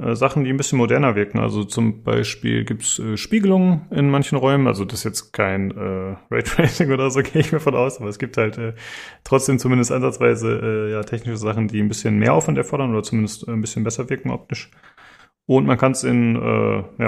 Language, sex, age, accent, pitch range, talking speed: German, male, 30-49, German, 110-130 Hz, 205 wpm